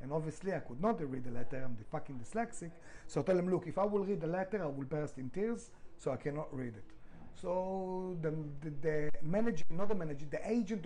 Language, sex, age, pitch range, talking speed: English, male, 30-49, 145-210 Hz, 240 wpm